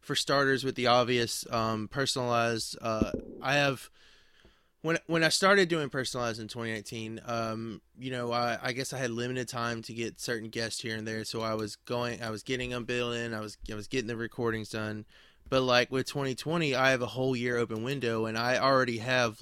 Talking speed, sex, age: 210 wpm, male, 20-39